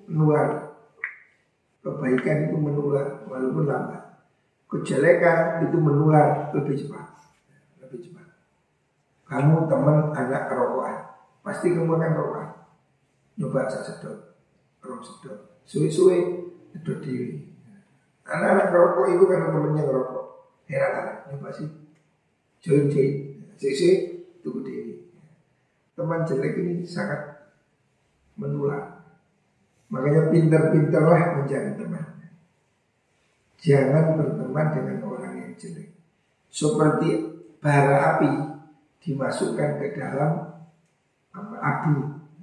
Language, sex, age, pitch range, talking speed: Indonesian, male, 50-69, 145-175 Hz, 85 wpm